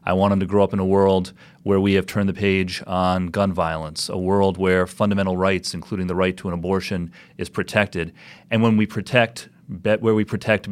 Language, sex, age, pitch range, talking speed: English, male, 30-49, 90-110 Hz, 215 wpm